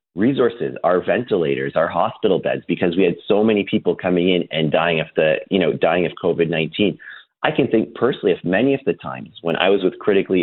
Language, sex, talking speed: English, male, 215 wpm